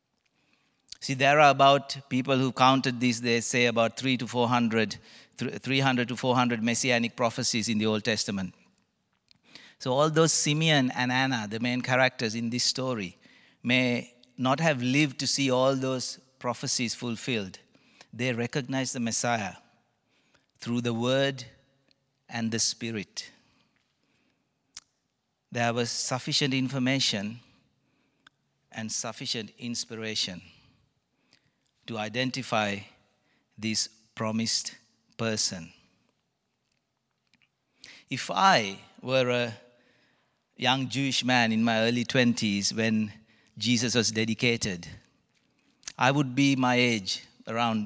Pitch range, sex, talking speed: 110-130 Hz, male, 110 wpm